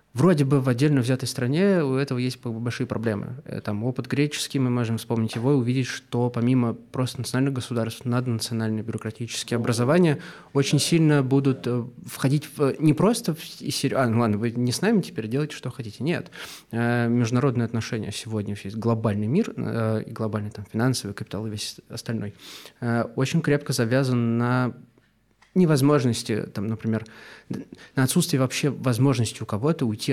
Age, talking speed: 20-39, 140 wpm